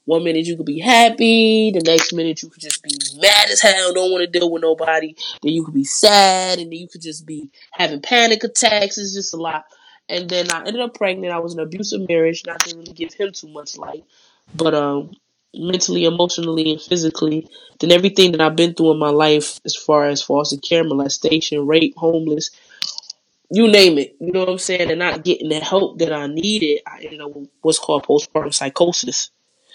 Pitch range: 155-185 Hz